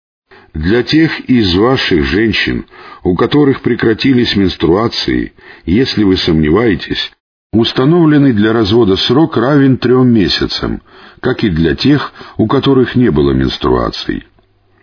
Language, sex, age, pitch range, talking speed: Russian, male, 50-69, 90-125 Hz, 115 wpm